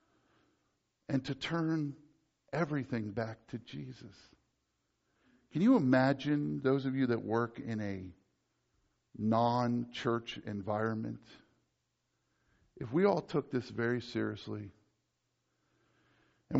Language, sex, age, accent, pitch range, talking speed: English, male, 50-69, American, 110-135 Hz, 100 wpm